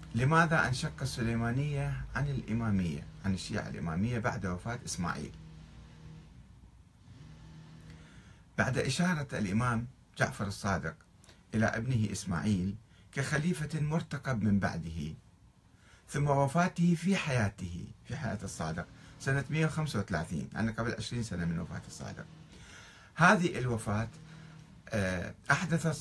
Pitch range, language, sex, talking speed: 100-150 Hz, Arabic, male, 95 wpm